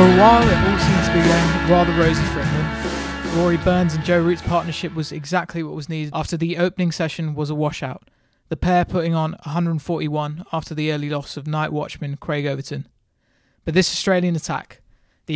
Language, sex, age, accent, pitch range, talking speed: English, male, 20-39, British, 150-175 Hz, 195 wpm